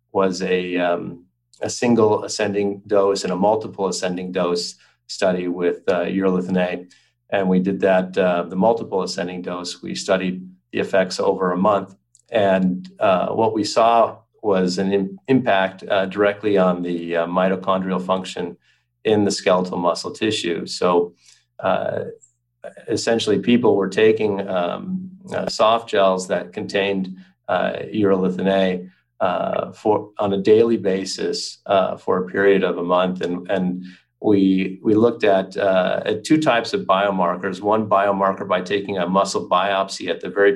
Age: 40-59